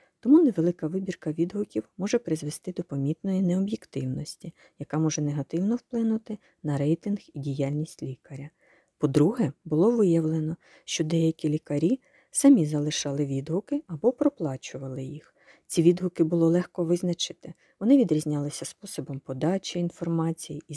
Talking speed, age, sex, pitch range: 120 wpm, 40-59, female, 150-190 Hz